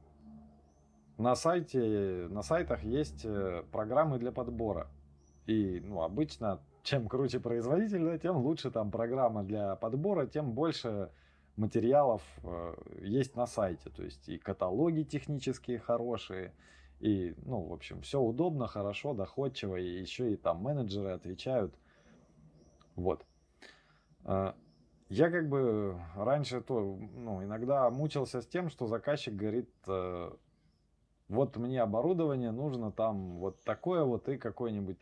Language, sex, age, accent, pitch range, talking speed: Russian, male, 20-39, native, 95-135 Hz, 125 wpm